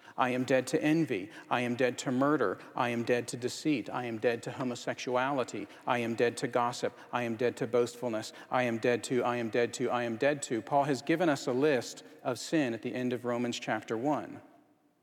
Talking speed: 230 wpm